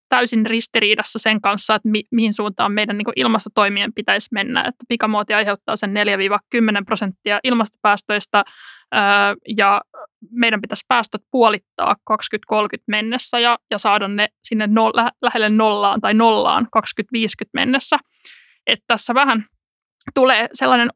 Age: 20-39